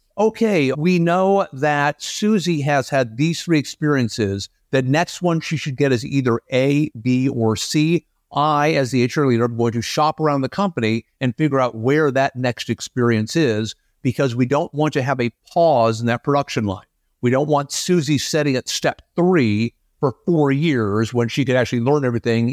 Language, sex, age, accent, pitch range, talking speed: English, male, 50-69, American, 120-155 Hz, 185 wpm